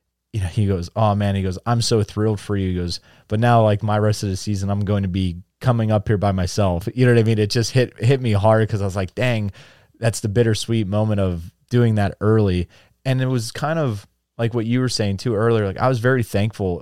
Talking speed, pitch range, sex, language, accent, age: 260 wpm, 95-110 Hz, male, English, American, 30-49